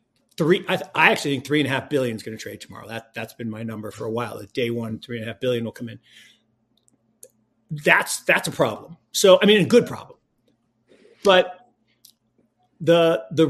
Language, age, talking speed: English, 50-69, 200 wpm